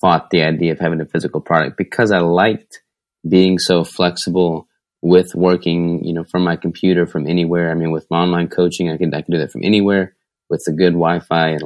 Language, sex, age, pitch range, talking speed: English, male, 20-39, 85-90 Hz, 220 wpm